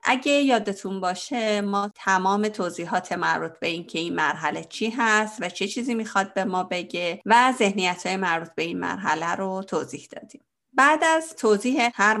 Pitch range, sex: 175-230 Hz, female